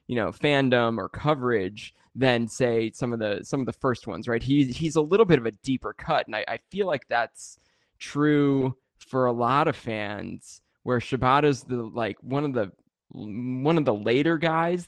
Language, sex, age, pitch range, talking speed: English, male, 20-39, 115-135 Hz, 200 wpm